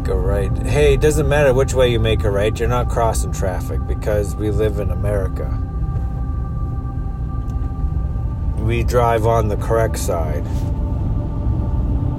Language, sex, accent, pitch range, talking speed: English, male, American, 100-115 Hz, 135 wpm